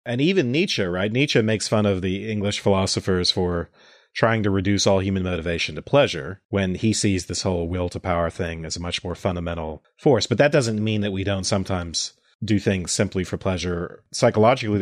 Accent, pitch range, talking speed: American, 95-115 Hz, 200 wpm